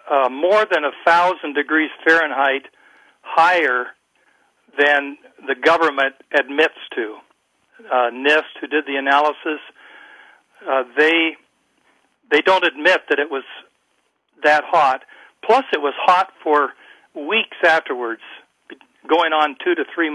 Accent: American